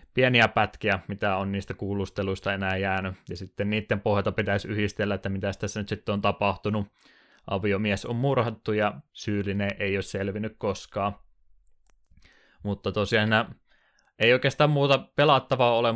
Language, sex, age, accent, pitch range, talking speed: Finnish, male, 20-39, native, 100-110 Hz, 140 wpm